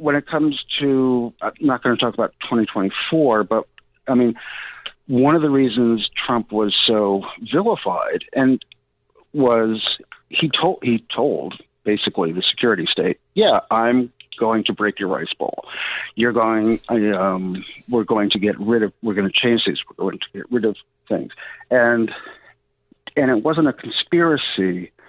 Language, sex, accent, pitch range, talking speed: English, male, American, 105-130 Hz, 170 wpm